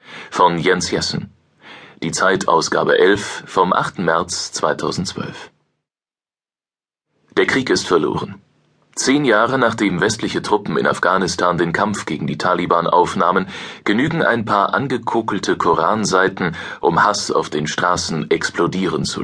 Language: German